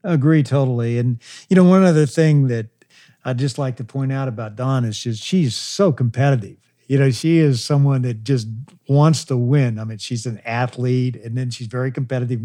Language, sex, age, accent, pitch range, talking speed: English, male, 50-69, American, 125-155 Hz, 205 wpm